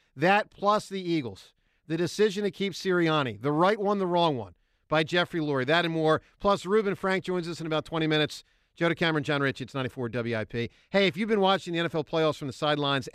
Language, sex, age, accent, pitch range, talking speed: English, male, 50-69, American, 145-195 Hz, 220 wpm